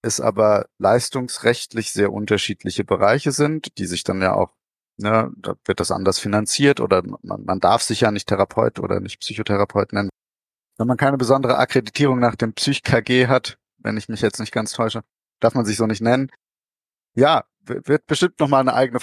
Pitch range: 110-135 Hz